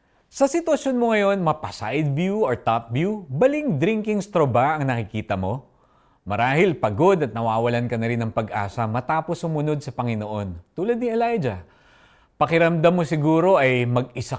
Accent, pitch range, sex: native, 100-150 Hz, male